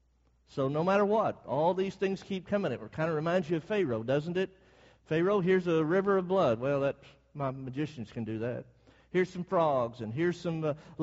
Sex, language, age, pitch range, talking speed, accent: male, English, 50-69, 135-185 Hz, 200 wpm, American